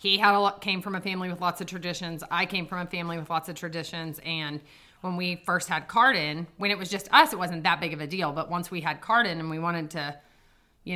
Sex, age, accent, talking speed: female, 30-49, American, 270 wpm